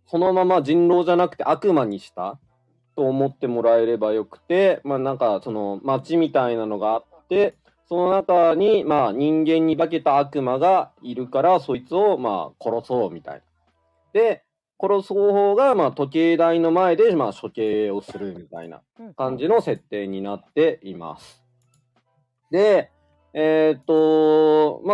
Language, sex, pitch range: Japanese, male, 120-195 Hz